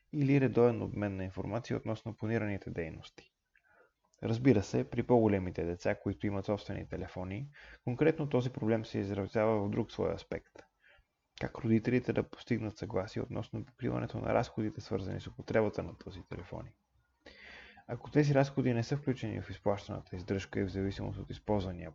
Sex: male